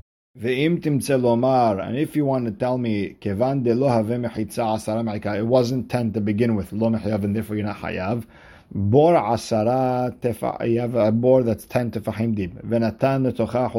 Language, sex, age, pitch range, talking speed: English, male, 50-69, 105-125 Hz, 90 wpm